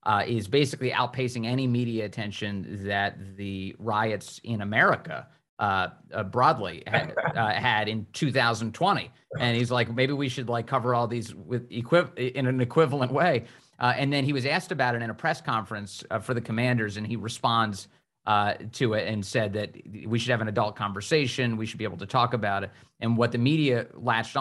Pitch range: 105-130 Hz